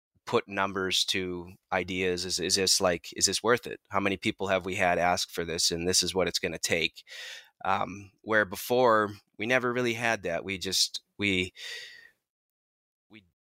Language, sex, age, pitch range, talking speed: English, male, 20-39, 95-110 Hz, 180 wpm